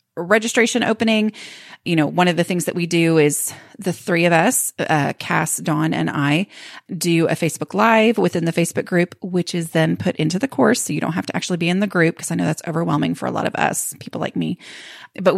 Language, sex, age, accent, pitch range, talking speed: English, female, 30-49, American, 155-200 Hz, 235 wpm